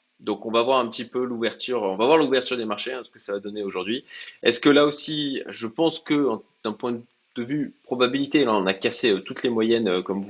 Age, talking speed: 20-39, 255 wpm